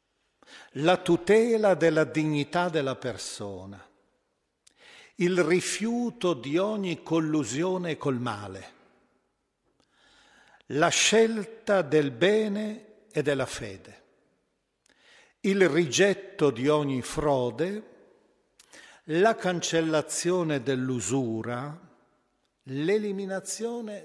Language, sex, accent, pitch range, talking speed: Italian, male, native, 140-190 Hz, 70 wpm